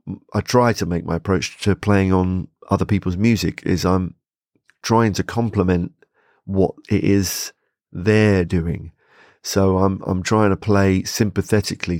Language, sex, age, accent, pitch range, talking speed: English, male, 30-49, British, 90-110 Hz, 145 wpm